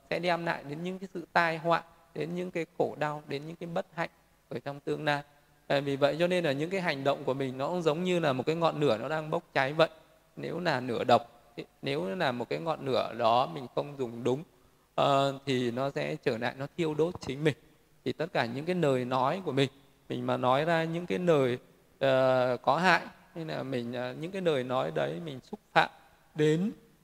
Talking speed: 230 wpm